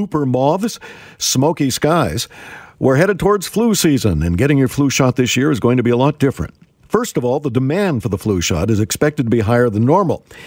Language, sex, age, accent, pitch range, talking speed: English, male, 50-69, American, 120-180 Hz, 225 wpm